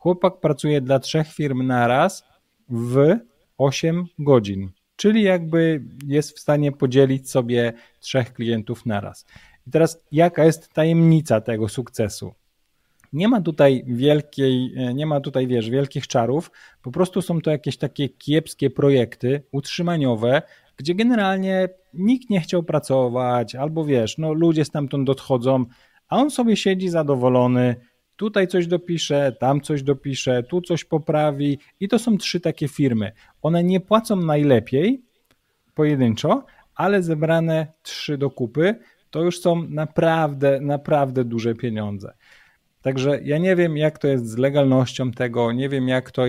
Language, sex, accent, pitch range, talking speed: Polish, male, native, 125-165 Hz, 140 wpm